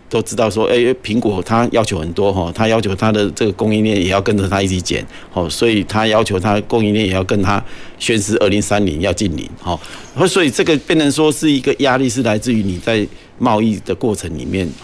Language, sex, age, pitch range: Chinese, male, 50-69, 95-120 Hz